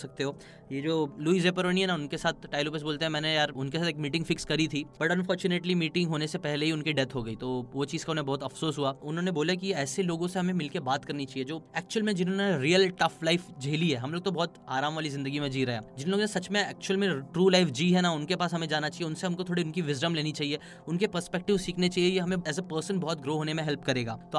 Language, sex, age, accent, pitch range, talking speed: Hindi, male, 10-29, native, 145-175 Hz, 220 wpm